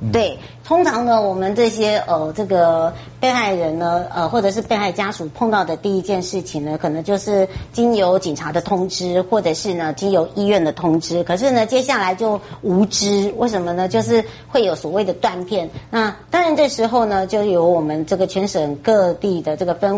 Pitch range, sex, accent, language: 170-220 Hz, male, American, Chinese